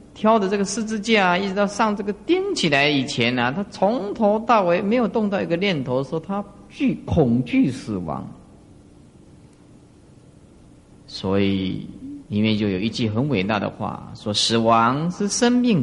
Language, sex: Chinese, male